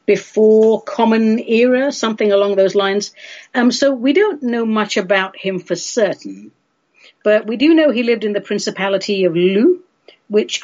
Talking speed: 165 wpm